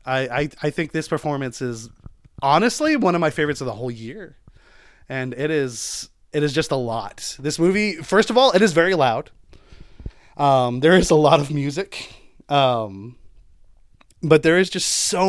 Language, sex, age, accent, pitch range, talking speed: English, male, 30-49, American, 125-170 Hz, 175 wpm